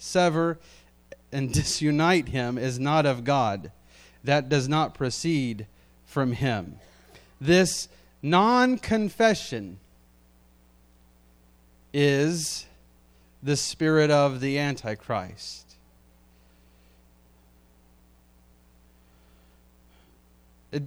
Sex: male